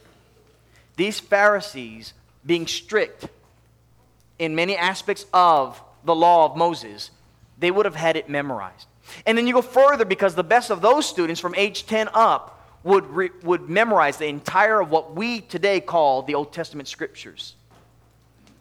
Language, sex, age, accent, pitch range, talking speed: English, male, 30-49, American, 115-180 Hz, 155 wpm